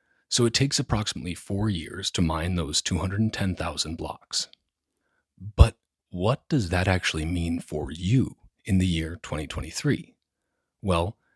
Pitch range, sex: 80-105 Hz, male